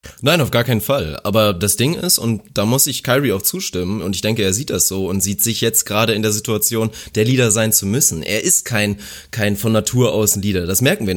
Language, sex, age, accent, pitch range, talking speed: German, male, 30-49, German, 110-145 Hz, 255 wpm